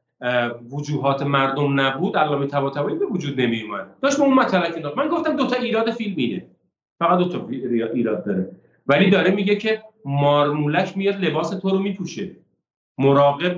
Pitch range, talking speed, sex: 145-205 Hz, 145 wpm, male